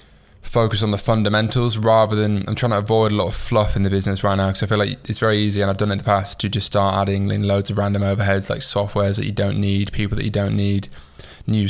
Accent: British